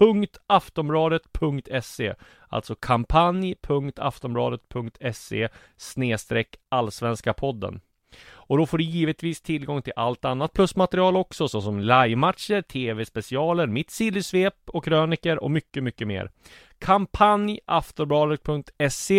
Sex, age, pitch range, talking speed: male, 30-49, 115-165 Hz, 90 wpm